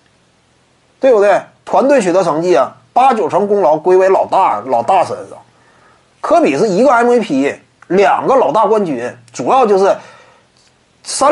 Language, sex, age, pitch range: Chinese, male, 30-49, 210-300 Hz